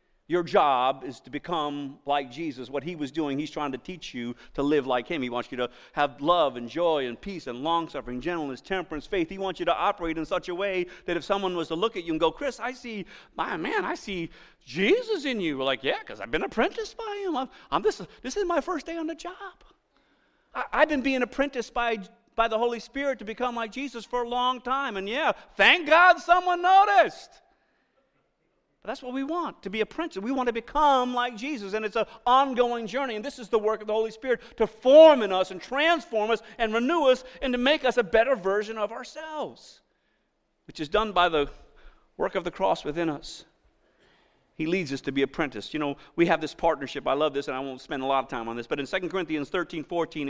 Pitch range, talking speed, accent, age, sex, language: 160-255 Hz, 235 wpm, American, 40-59, male, English